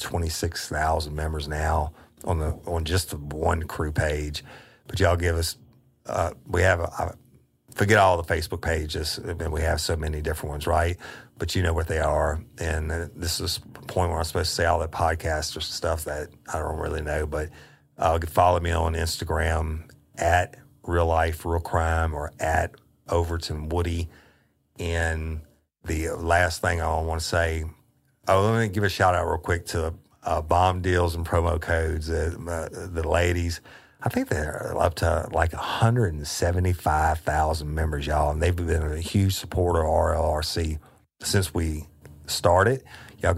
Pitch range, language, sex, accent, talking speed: 80-90 Hz, English, male, American, 175 wpm